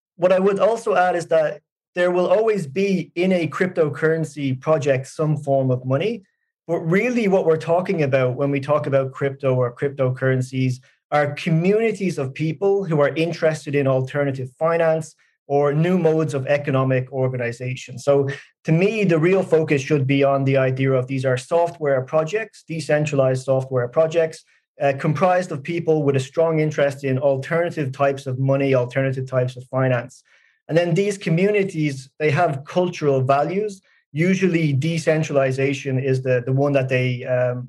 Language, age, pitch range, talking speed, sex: English, 30-49, 135-165 Hz, 160 wpm, male